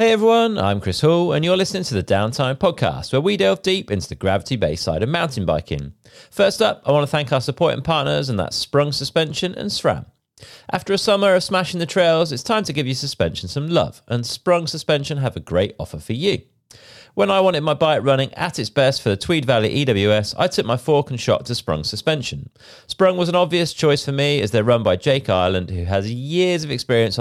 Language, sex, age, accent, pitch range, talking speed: English, male, 40-59, British, 115-160 Hz, 230 wpm